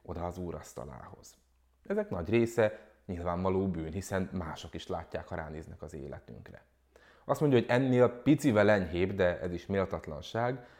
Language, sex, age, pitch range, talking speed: Hungarian, male, 30-49, 85-120 Hz, 145 wpm